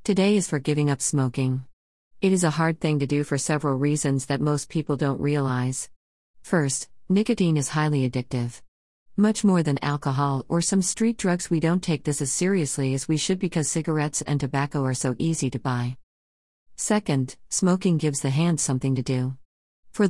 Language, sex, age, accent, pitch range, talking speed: English, female, 40-59, American, 135-170 Hz, 180 wpm